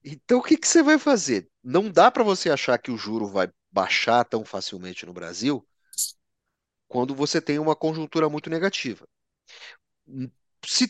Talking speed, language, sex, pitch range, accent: 160 wpm, Portuguese, male, 120-180 Hz, Brazilian